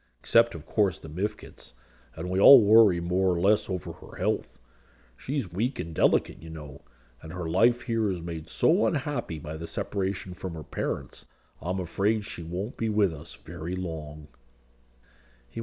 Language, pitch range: English, 75-100 Hz